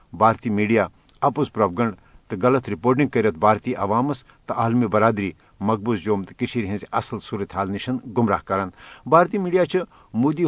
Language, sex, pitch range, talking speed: Urdu, male, 110-140 Hz, 150 wpm